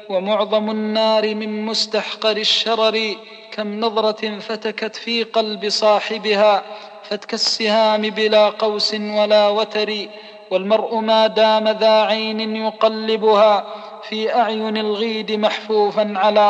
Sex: male